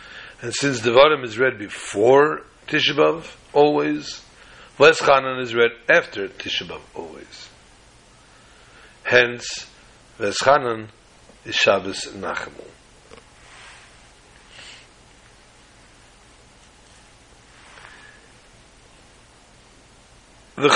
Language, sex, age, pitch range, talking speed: English, male, 60-79, 115-140 Hz, 60 wpm